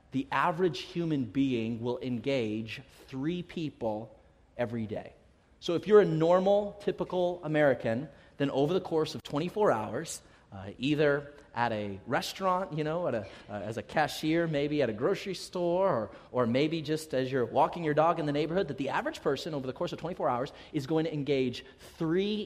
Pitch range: 120-175 Hz